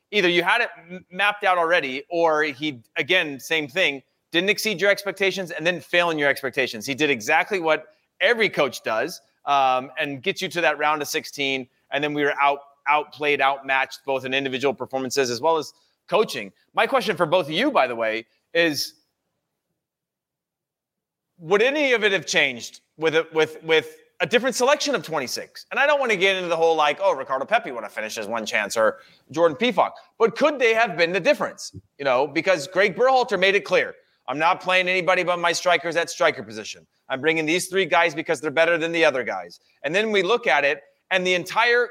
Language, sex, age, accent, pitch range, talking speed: English, male, 30-49, American, 150-195 Hz, 210 wpm